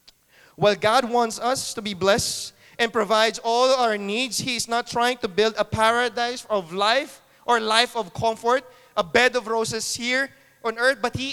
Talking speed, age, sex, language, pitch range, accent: 185 wpm, 20-39, male, English, 200-265 Hz, Filipino